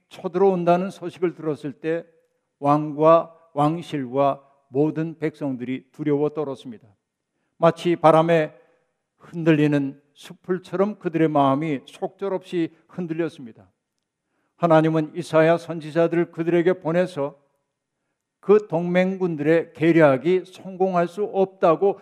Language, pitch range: Korean, 150-180 Hz